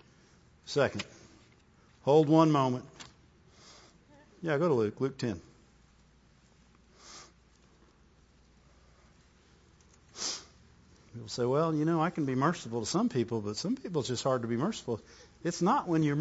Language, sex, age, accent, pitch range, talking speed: English, male, 50-69, American, 130-215 Hz, 130 wpm